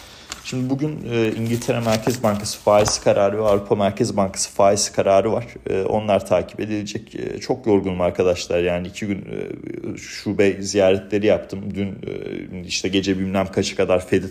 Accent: native